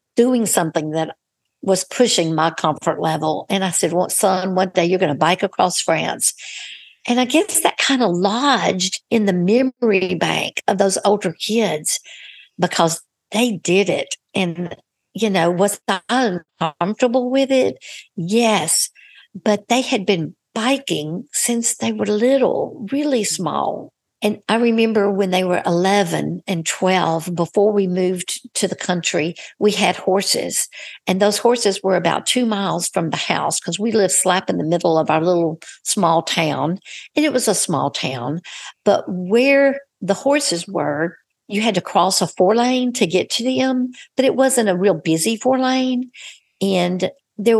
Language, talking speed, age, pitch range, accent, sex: English, 165 wpm, 60-79, 175-225 Hz, American, female